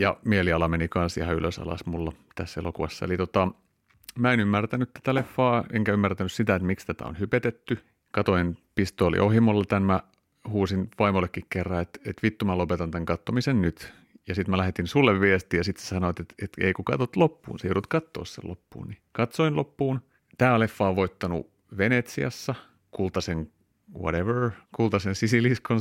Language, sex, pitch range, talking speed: Finnish, male, 85-110 Hz, 175 wpm